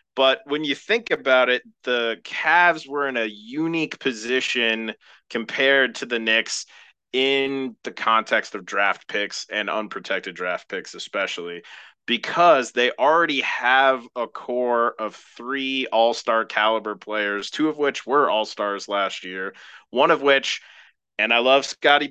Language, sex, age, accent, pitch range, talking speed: English, male, 30-49, American, 105-140 Hz, 145 wpm